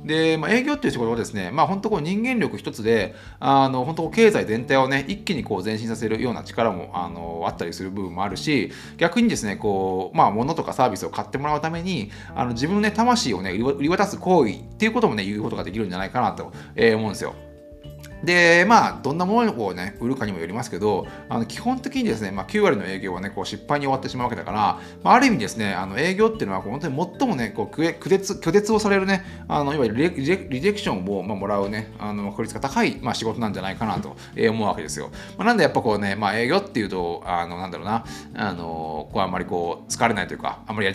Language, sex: Japanese, male